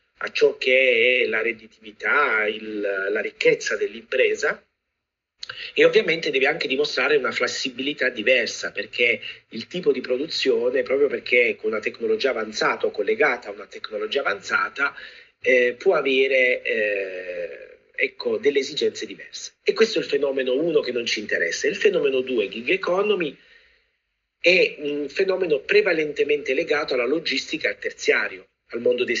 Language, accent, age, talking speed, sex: Italian, native, 40-59, 140 wpm, male